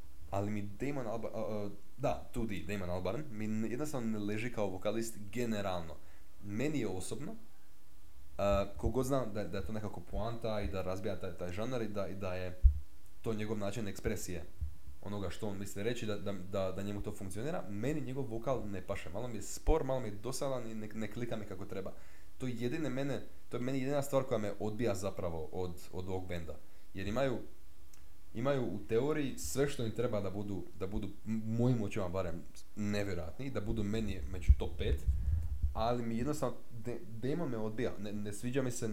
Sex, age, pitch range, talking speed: male, 20-39, 90-120 Hz, 195 wpm